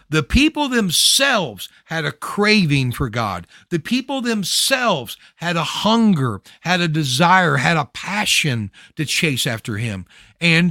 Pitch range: 145-215 Hz